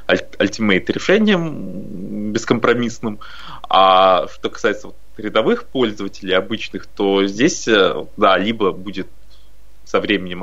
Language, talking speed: Russian, 90 wpm